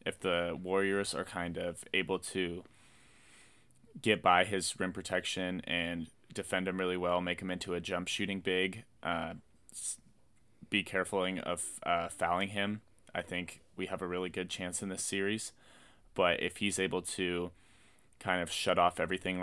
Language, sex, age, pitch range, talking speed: English, male, 20-39, 90-95 Hz, 165 wpm